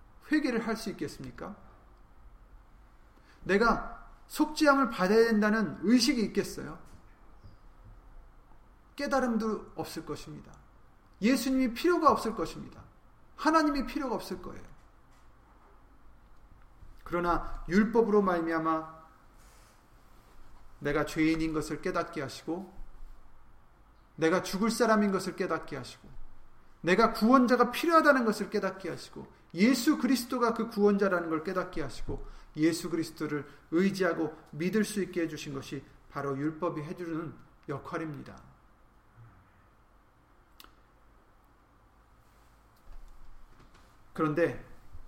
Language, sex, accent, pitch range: Korean, male, native, 140-210 Hz